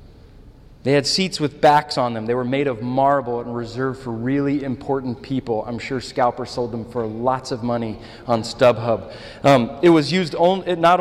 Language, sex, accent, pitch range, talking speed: English, male, American, 120-150 Hz, 185 wpm